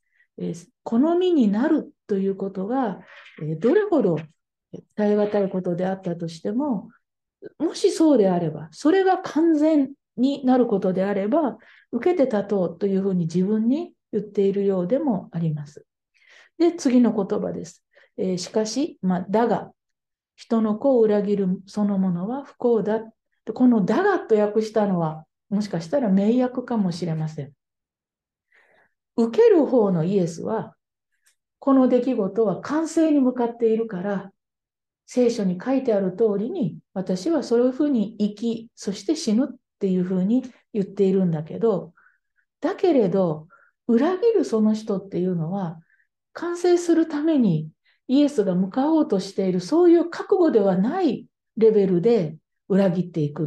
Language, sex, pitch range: Japanese, female, 190-265 Hz